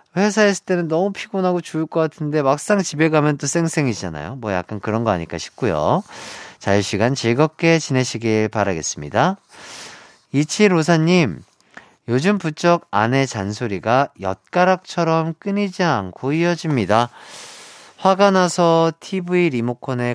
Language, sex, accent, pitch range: Korean, male, native, 115-165 Hz